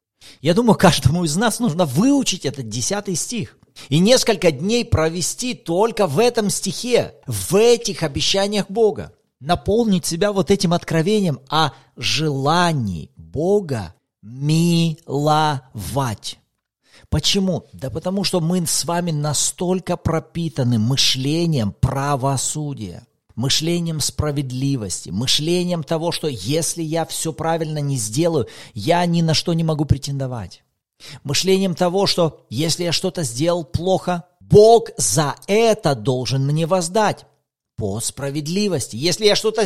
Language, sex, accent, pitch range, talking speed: Russian, male, native, 135-180 Hz, 120 wpm